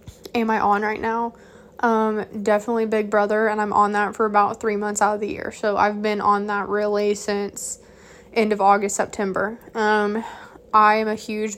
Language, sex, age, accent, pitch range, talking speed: English, female, 20-39, American, 205-235 Hz, 190 wpm